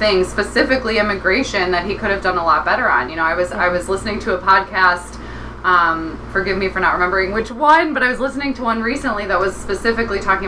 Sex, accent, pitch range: female, American, 160-195 Hz